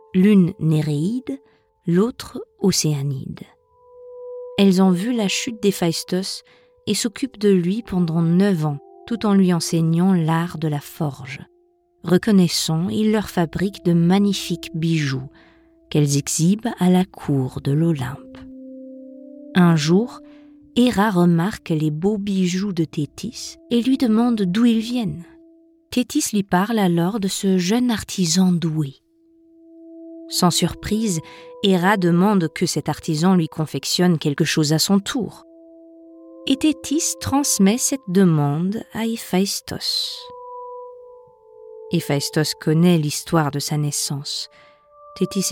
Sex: female